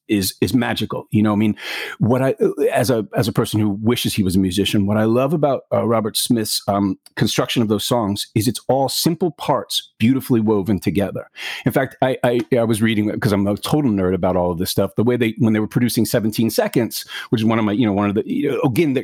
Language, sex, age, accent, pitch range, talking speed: English, male, 40-59, American, 105-140 Hz, 245 wpm